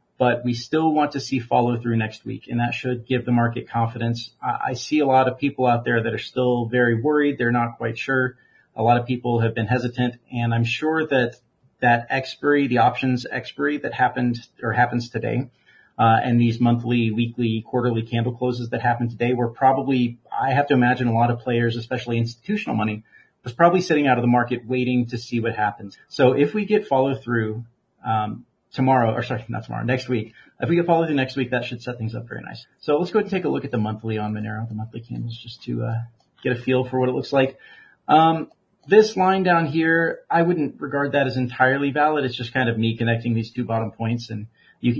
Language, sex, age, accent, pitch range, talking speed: English, male, 40-59, American, 115-130 Hz, 225 wpm